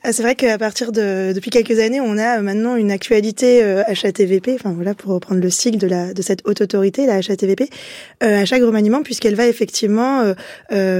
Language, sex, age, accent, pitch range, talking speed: French, female, 20-39, French, 195-235 Hz, 215 wpm